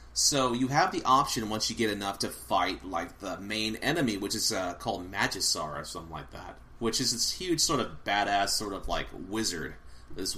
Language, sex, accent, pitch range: English, male, American, 85-115 Hz